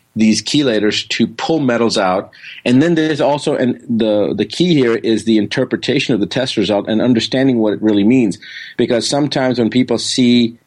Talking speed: 185 wpm